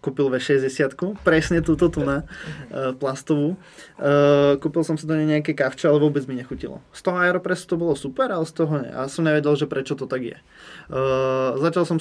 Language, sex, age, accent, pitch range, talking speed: Czech, male, 20-39, native, 130-155 Hz, 190 wpm